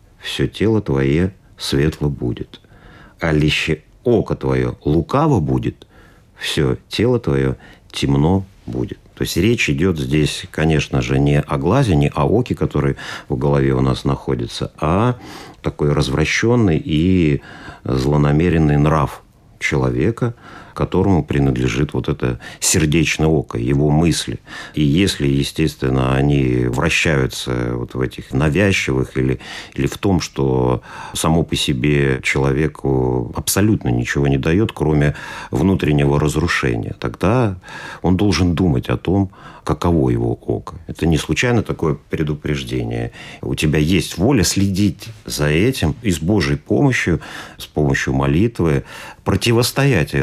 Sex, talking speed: male, 125 wpm